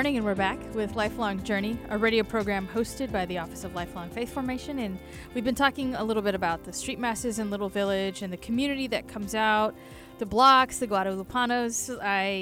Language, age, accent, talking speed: English, 20-39, American, 210 wpm